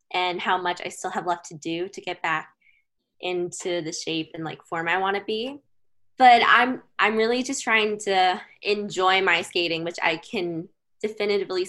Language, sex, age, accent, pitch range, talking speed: English, female, 10-29, American, 165-230 Hz, 180 wpm